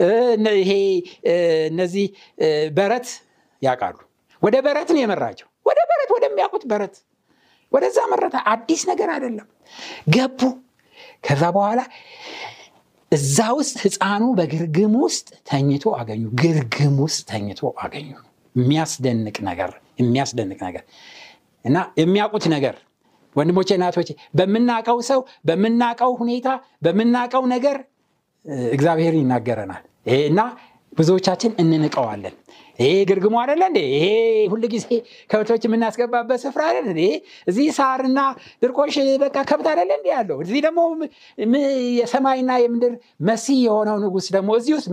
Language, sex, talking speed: Amharic, male, 80 wpm